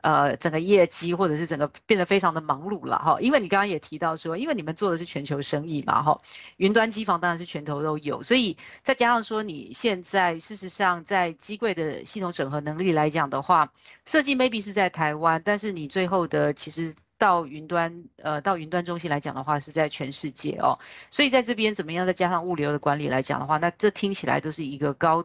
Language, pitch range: Chinese, 155-200 Hz